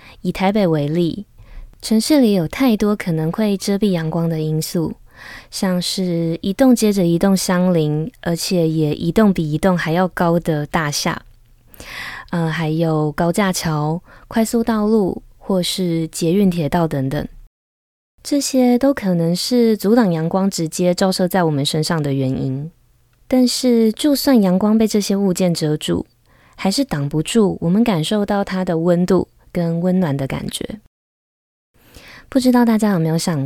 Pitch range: 155-200 Hz